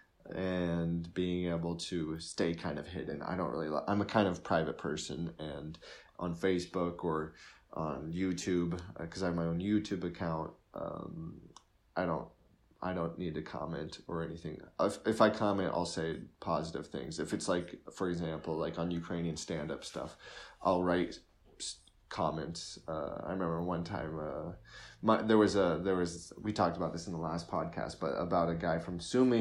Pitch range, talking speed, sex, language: 85-100 Hz, 180 wpm, male, Ukrainian